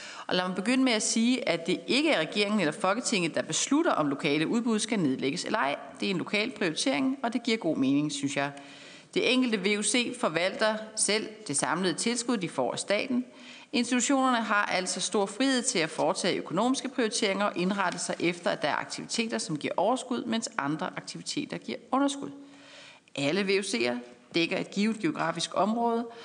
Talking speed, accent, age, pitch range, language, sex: 185 wpm, native, 40-59, 175-240 Hz, Danish, female